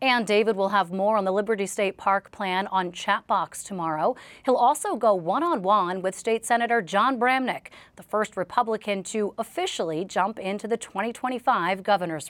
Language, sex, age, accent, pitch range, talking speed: English, female, 30-49, American, 190-230 Hz, 170 wpm